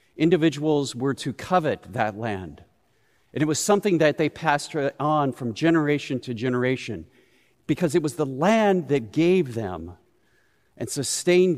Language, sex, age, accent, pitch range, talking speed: English, male, 50-69, American, 110-150 Hz, 145 wpm